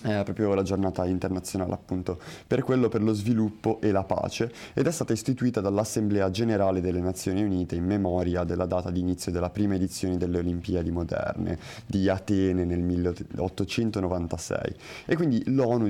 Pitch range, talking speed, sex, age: 90-115 Hz, 160 wpm, male, 20-39